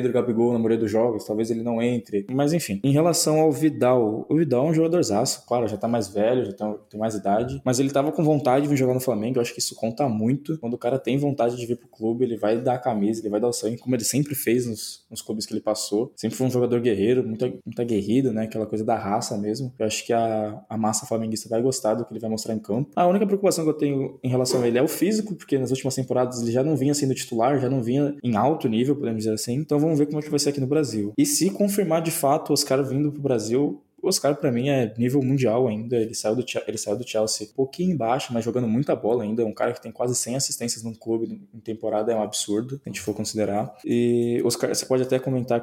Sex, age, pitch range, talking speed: male, 20-39, 110-135 Hz, 270 wpm